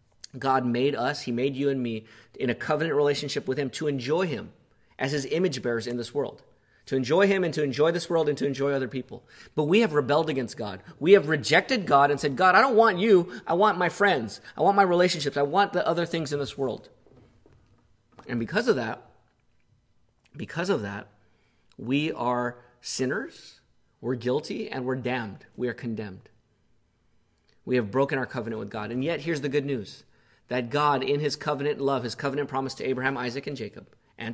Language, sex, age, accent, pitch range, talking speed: English, male, 30-49, American, 130-165 Hz, 205 wpm